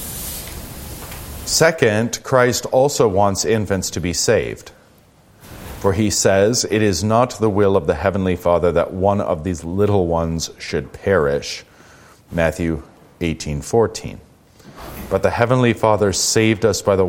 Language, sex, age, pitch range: English, male, 40-59, 80-110 Hz